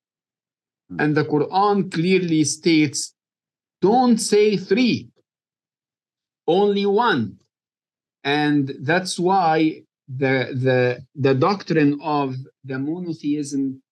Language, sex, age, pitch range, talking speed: English, male, 50-69, 130-170 Hz, 85 wpm